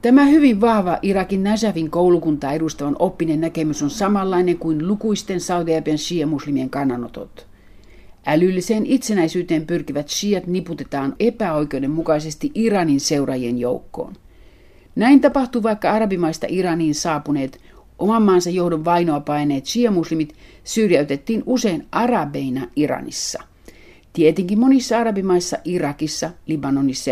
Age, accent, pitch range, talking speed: 50-69, native, 150-200 Hz, 100 wpm